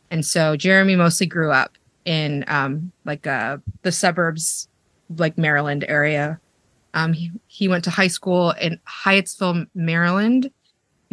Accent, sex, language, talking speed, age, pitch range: American, female, English, 140 wpm, 20-39, 165-210 Hz